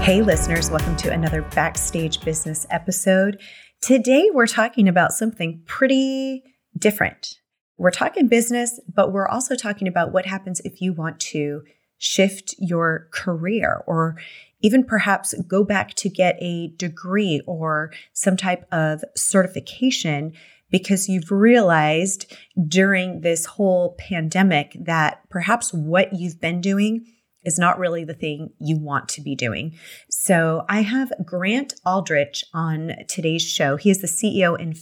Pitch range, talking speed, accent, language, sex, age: 165-200 Hz, 140 wpm, American, English, female, 30-49